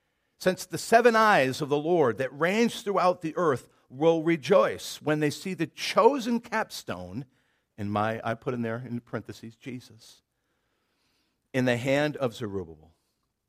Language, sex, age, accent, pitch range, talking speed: English, male, 50-69, American, 120-165 Hz, 150 wpm